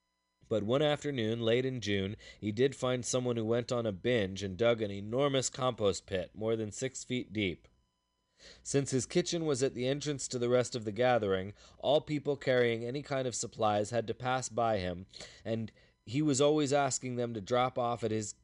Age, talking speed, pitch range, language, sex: 20-39, 200 wpm, 105-135 Hz, English, male